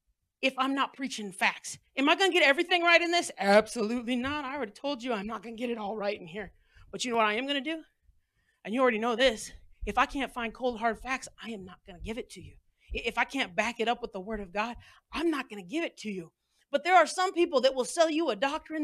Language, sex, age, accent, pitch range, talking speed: English, female, 40-59, American, 210-300 Hz, 285 wpm